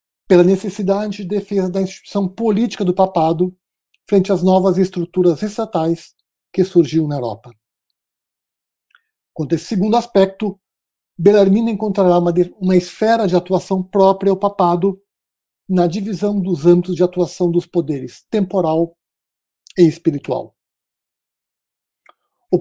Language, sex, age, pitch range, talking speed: Portuguese, male, 60-79, 175-200 Hz, 115 wpm